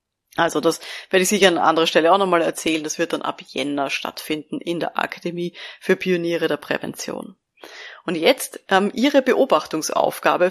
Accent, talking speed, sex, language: German, 165 wpm, female, German